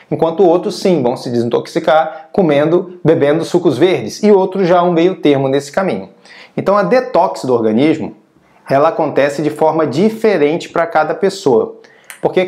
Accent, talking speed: Brazilian, 155 wpm